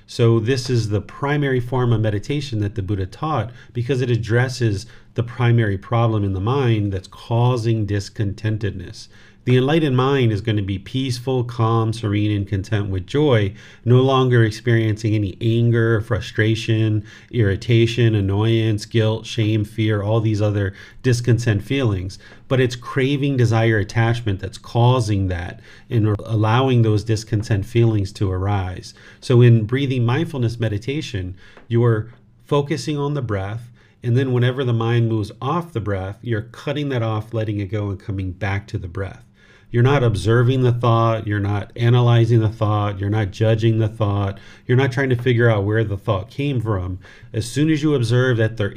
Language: English